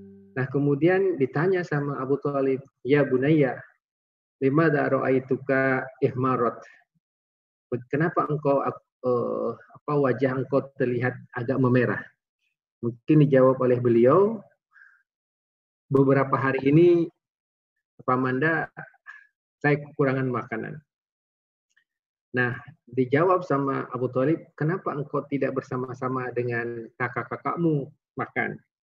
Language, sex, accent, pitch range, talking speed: Indonesian, male, native, 120-145 Hz, 85 wpm